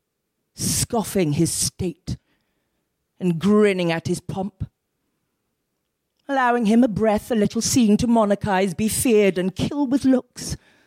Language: English